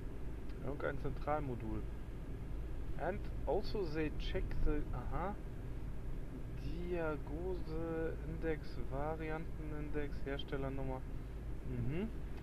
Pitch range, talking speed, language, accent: 125-165 Hz, 50 wpm, German, German